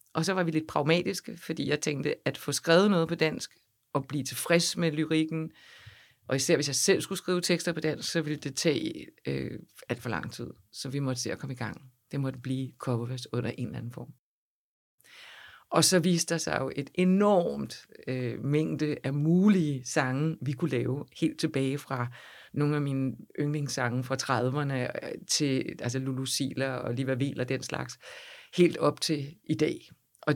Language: Danish